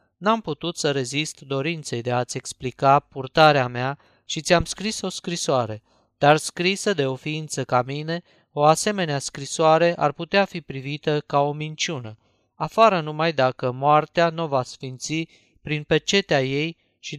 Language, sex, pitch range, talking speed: Romanian, male, 135-160 Hz, 150 wpm